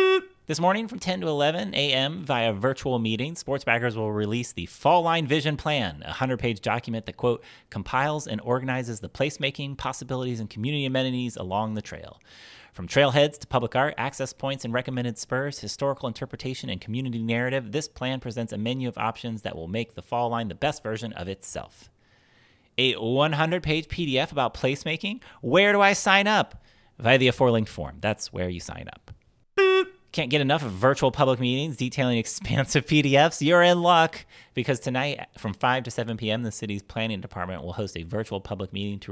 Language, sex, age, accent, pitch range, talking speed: English, male, 30-49, American, 105-135 Hz, 180 wpm